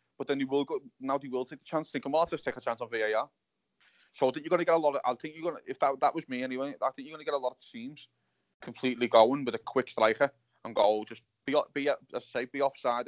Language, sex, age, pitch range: English, male, 20-39, 115-140 Hz